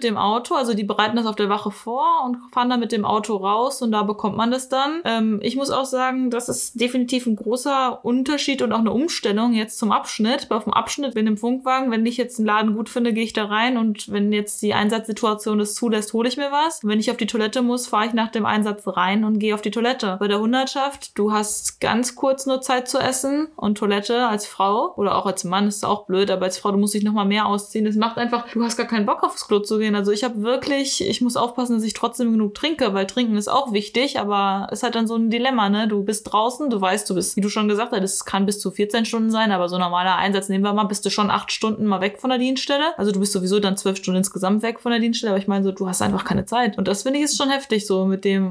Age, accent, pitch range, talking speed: 20-39, German, 205-245 Hz, 280 wpm